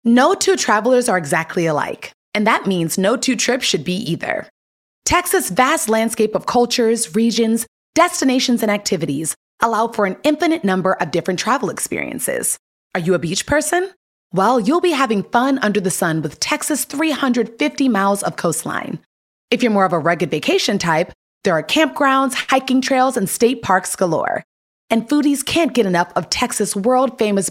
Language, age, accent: English, 30-49, American